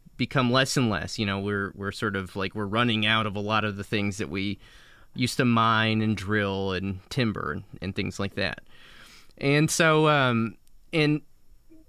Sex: male